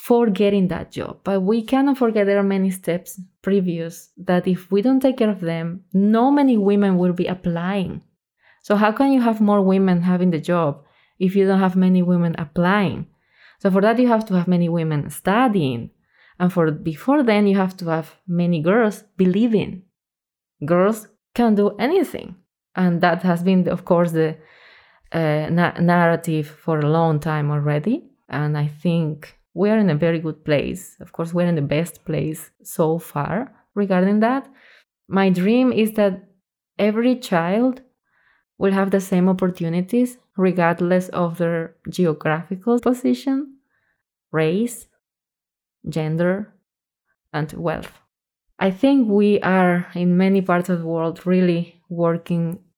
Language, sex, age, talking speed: English, female, 20-39, 155 wpm